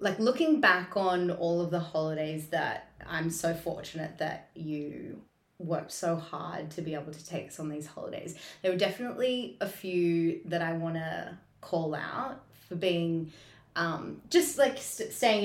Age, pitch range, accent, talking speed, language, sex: 20-39, 160-195 Hz, Australian, 165 wpm, English, female